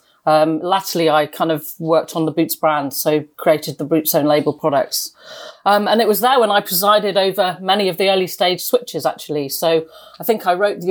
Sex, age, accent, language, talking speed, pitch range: female, 40-59, British, English, 215 wpm, 155-180 Hz